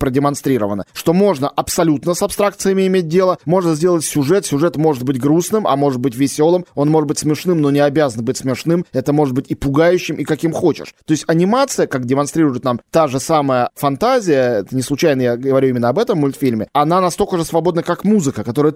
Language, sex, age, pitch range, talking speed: Russian, male, 20-39, 140-175 Hz, 200 wpm